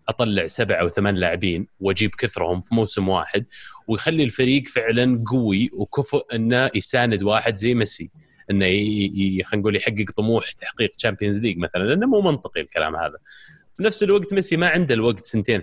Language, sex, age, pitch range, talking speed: Arabic, male, 30-49, 95-120 Hz, 160 wpm